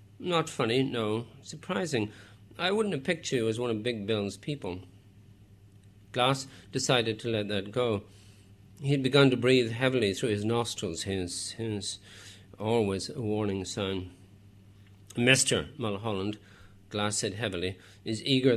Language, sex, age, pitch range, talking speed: English, male, 40-59, 100-125 Hz, 140 wpm